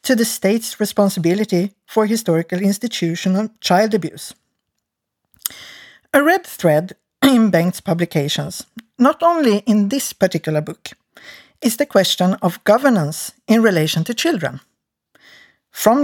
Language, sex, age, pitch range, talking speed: English, female, 50-69, 165-240 Hz, 115 wpm